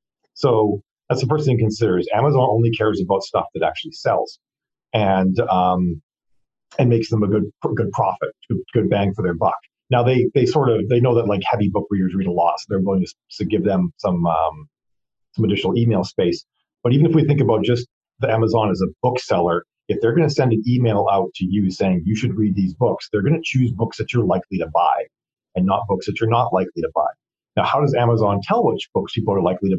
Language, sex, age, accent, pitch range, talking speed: English, male, 40-59, American, 95-130 Hz, 230 wpm